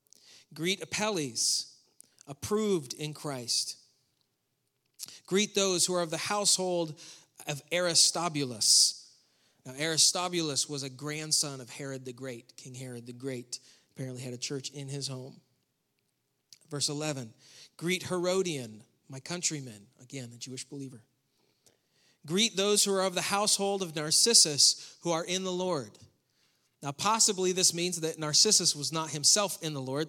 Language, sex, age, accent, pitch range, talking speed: English, male, 40-59, American, 130-170 Hz, 140 wpm